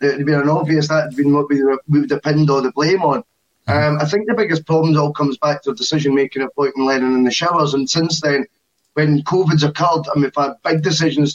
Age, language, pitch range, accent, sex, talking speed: 10-29, English, 140-160 Hz, British, male, 250 wpm